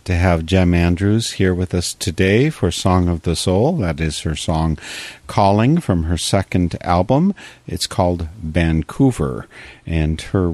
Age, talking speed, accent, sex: 50-69, 155 wpm, American, male